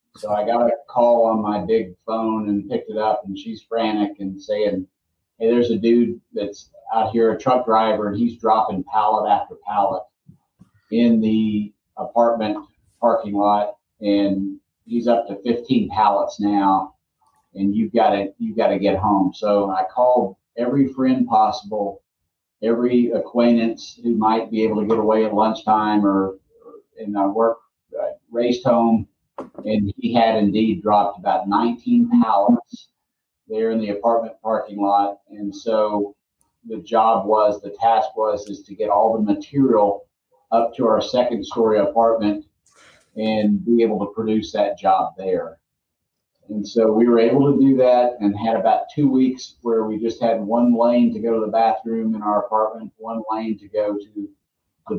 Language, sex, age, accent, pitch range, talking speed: English, male, 40-59, American, 105-120 Hz, 165 wpm